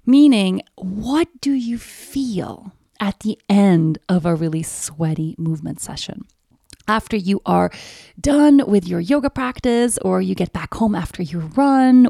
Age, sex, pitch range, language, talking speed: 20-39, female, 170-240 Hz, English, 150 wpm